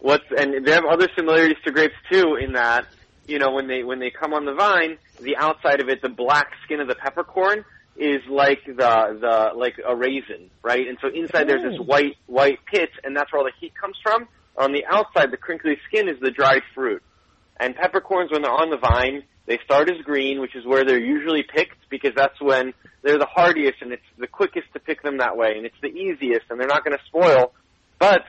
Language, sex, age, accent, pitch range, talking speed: English, male, 30-49, American, 130-165 Hz, 230 wpm